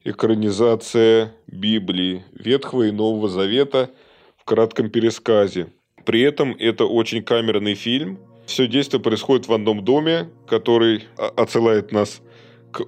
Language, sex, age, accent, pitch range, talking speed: Russian, male, 20-39, native, 105-125 Hz, 115 wpm